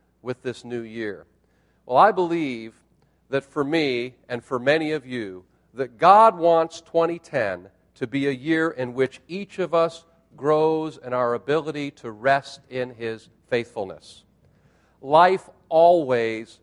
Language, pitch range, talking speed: English, 125-165 Hz, 140 wpm